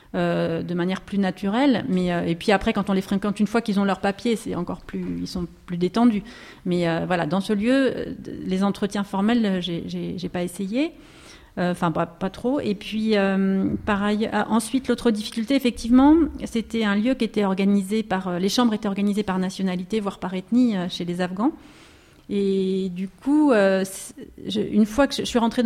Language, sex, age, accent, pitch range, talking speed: French, female, 40-59, French, 185-230 Hz, 195 wpm